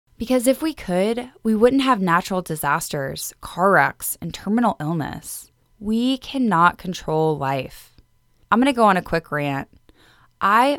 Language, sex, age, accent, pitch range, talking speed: English, female, 10-29, American, 165-220 Hz, 150 wpm